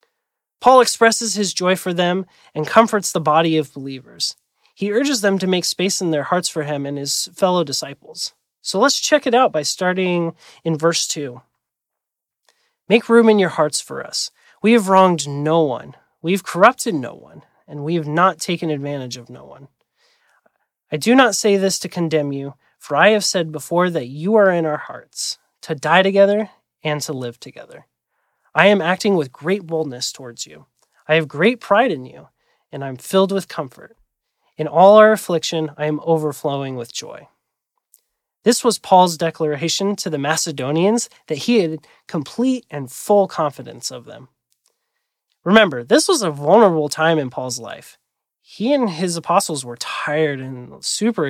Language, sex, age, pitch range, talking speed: English, male, 30-49, 150-200 Hz, 175 wpm